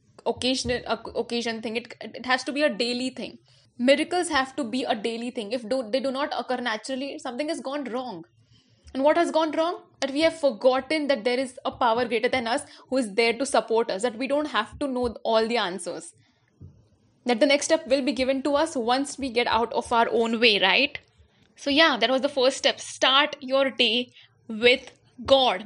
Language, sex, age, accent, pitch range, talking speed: English, female, 20-39, Indian, 230-280 Hz, 215 wpm